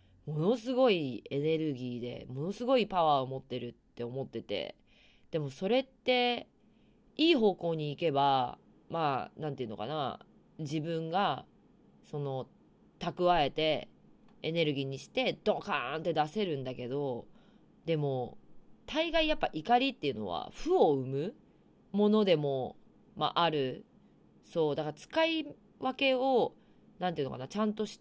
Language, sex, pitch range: Japanese, female, 140-220 Hz